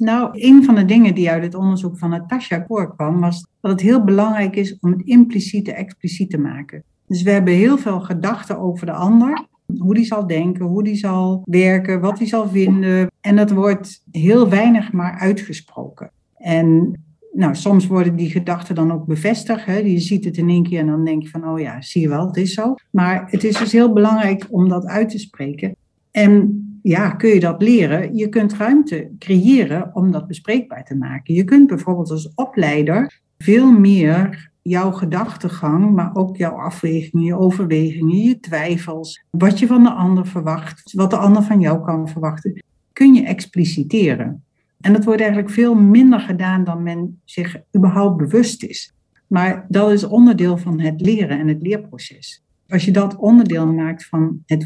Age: 60-79